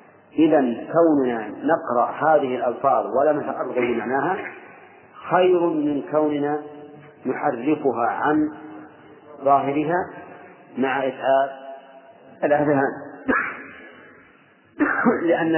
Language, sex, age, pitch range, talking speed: Arabic, male, 40-59, 125-155 Hz, 70 wpm